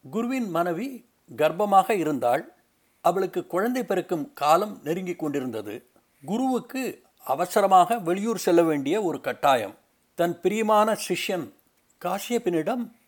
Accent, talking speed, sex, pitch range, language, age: native, 95 wpm, male, 165-220 Hz, Tamil, 60-79